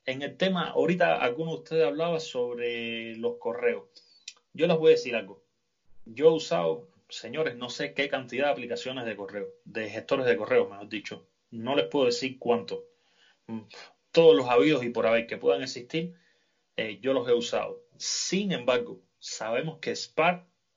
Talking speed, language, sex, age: 170 wpm, Spanish, male, 30-49